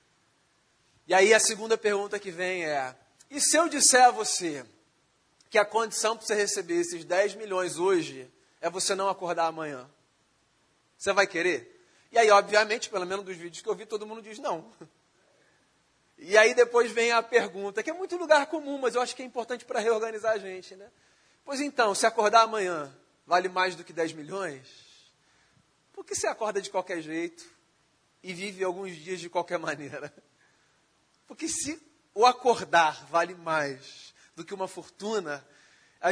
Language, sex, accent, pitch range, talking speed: Portuguese, male, Brazilian, 165-215 Hz, 175 wpm